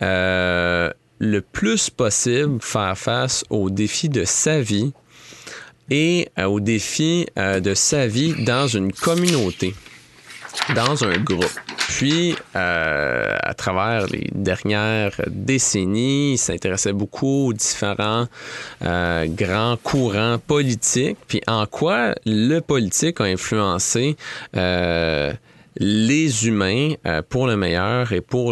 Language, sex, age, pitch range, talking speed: French, male, 30-49, 95-135 Hz, 120 wpm